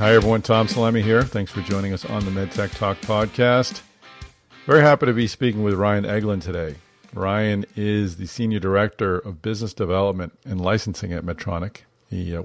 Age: 50-69